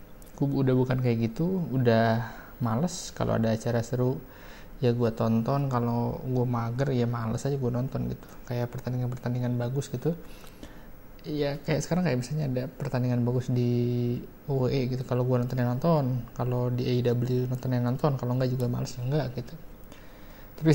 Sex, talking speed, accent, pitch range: male, 150 wpm, native, 120-135 Hz